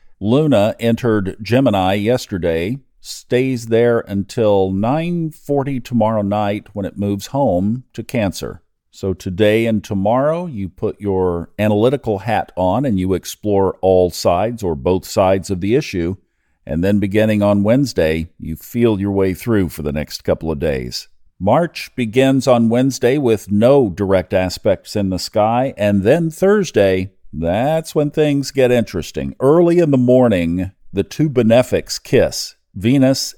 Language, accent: English, American